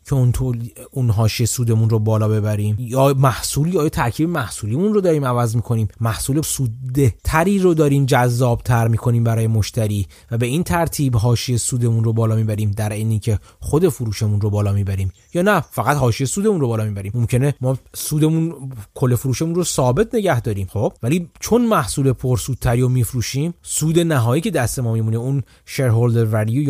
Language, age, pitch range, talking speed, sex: Persian, 30-49, 115-155 Hz, 175 wpm, male